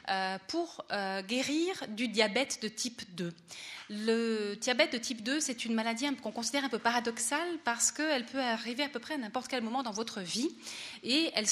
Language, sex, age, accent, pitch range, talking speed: French, female, 30-49, French, 205-265 Hz, 190 wpm